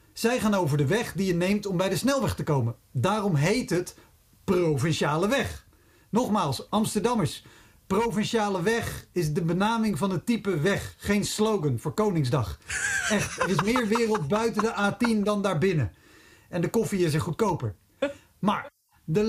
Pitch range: 150-215 Hz